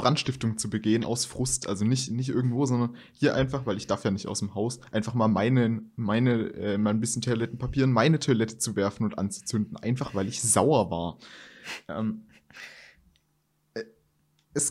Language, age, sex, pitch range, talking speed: German, 20-39, male, 110-140 Hz, 175 wpm